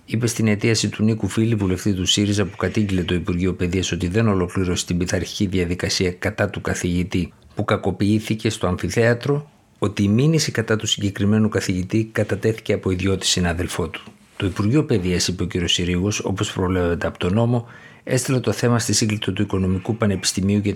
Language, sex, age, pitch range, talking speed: Greek, male, 50-69, 95-110 Hz, 175 wpm